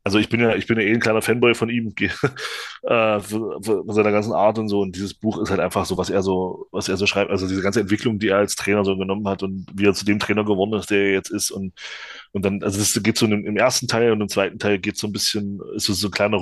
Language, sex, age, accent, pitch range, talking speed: German, male, 20-39, German, 100-115 Hz, 285 wpm